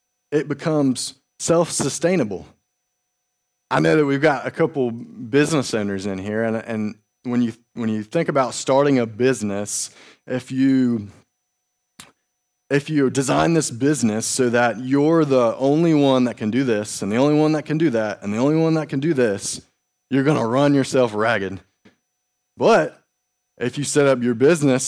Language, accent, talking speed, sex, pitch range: English, American, 170 wpm, male, 115-150 Hz